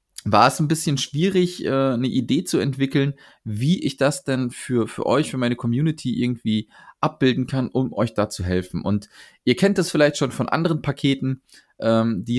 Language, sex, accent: German, male, German